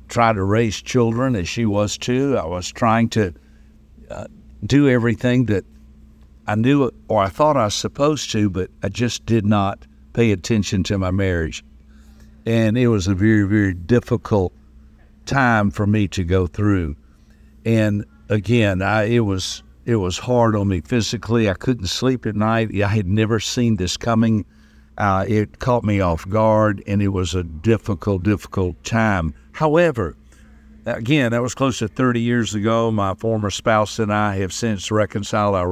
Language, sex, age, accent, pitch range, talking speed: English, male, 60-79, American, 90-120 Hz, 170 wpm